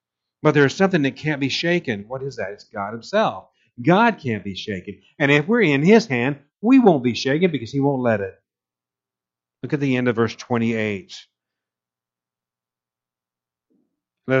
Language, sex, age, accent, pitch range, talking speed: English, male, 50-69, American, 90-140 Hz, 170 wpm